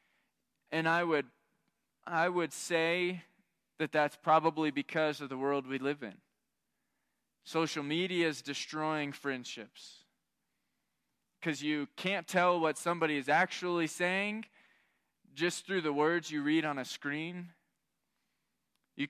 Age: 20-39